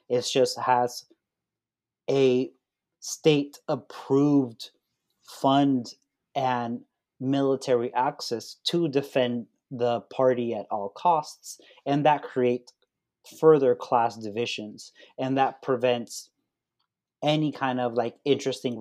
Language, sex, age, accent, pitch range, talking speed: Spanish, male, 30-49, American, 120-135 Hz, 100 wpm